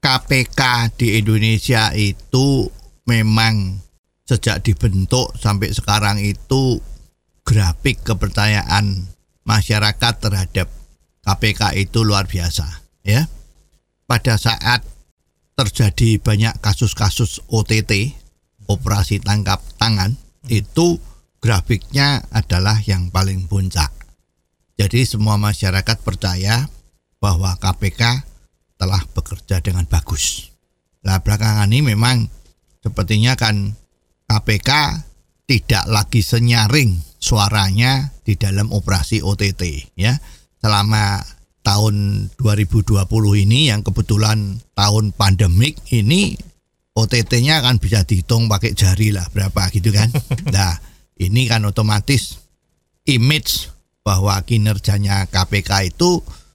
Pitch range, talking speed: 95-115 Hz, 95 wpm